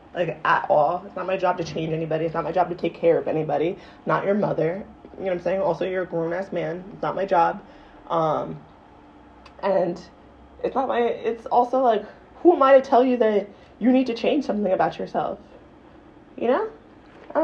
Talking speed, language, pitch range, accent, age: 215 wpm, English, 170-230 Hz, American, 20-39